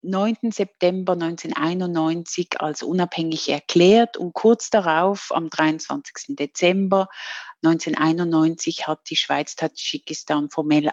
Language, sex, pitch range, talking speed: English, female, 160-190 Hz, 100 wpm